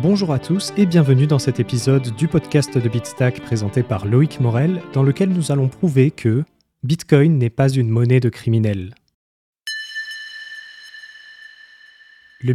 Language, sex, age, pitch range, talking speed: French, male, 20-39, 120-155 Hz, 150 wpm